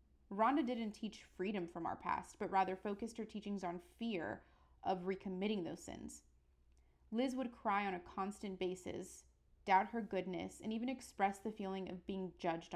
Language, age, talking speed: English, 30-49, 170 wpm